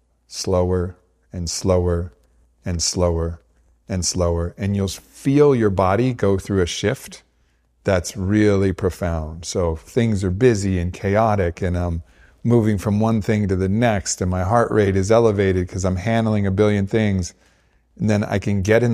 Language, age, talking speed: English, 40-59, 165 wpm